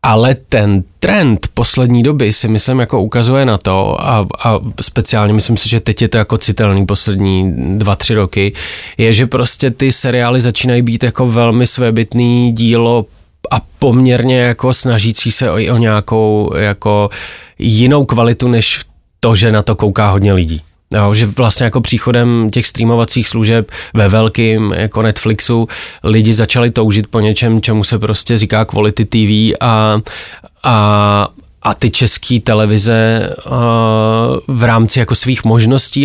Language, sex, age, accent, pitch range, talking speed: Czech, male, 20-39, native, 105-120 Hz, 150 wpm